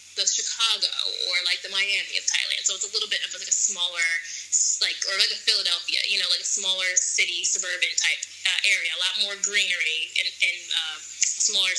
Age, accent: 20-39, American